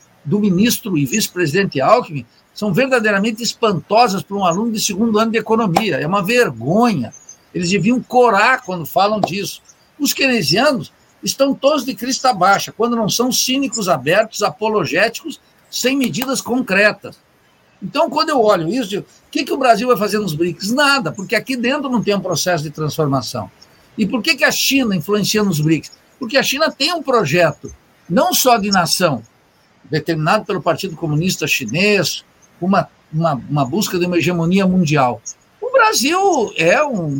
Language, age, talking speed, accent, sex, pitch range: Portuguese, 60-79, 160 wpm, Brazilian, male, 170-245 Hz